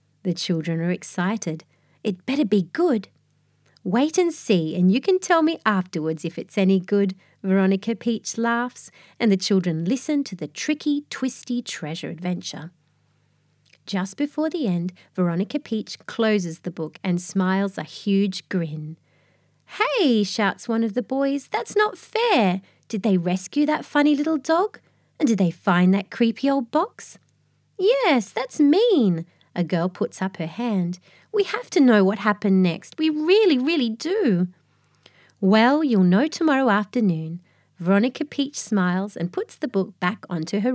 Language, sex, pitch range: English, female, 175-275 Hz